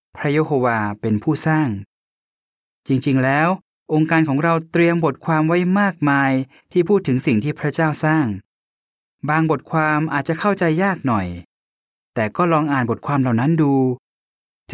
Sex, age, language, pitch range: male, 20-39, Thai, 125-165 Hz